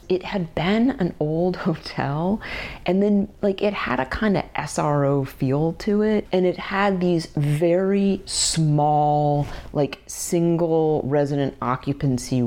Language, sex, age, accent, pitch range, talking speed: English, female, 30-49, American, 135-190 Hz, 135 wpm